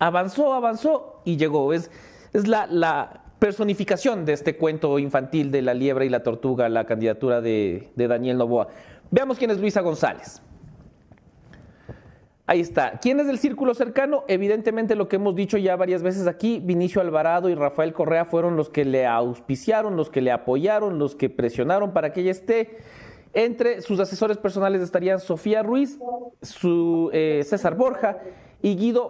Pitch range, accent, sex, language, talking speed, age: 150-210 Hz, Mexican, male, English, 165 wpm, 40-59